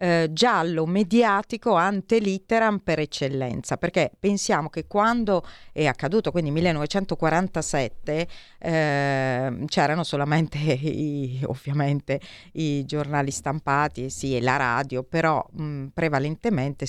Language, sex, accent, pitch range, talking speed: Italian, female, native, 135-165 Hz, 105 wpm